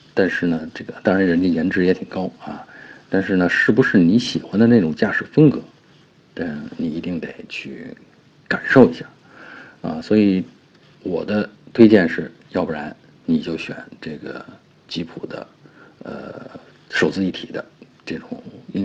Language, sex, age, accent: Chinese, male, 50-69, native